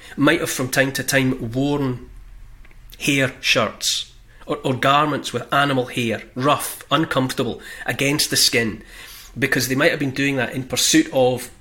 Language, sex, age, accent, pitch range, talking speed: English, male, 30-49, British, 120-140 Hz, 155 wpm